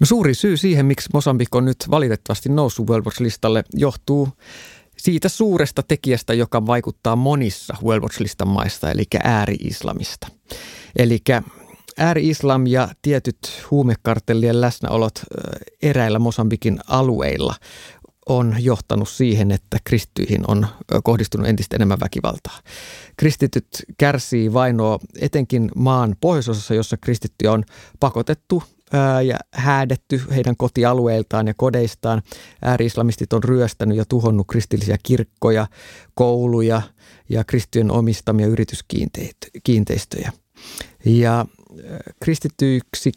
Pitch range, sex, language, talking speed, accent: 110-135 Hz, male, Finnish, 100 wpm, native